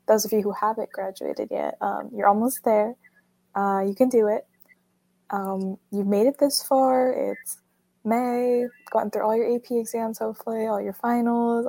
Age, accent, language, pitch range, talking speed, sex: 10-29, American, English, 205-235 Hz, 175 wpm, female